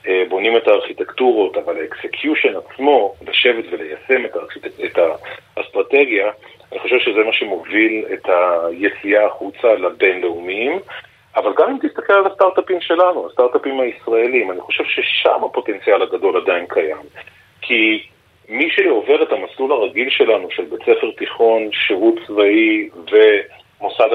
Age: 40-59